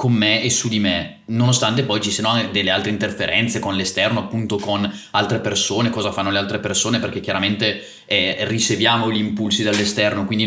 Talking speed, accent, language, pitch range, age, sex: 185 wpm, native, Italian, 110-140 Hz, 20-39, male